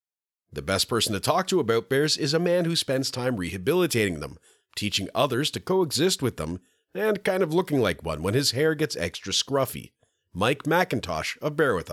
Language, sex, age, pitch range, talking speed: English, male, 40-59, 95-145 Hz, 195 wpm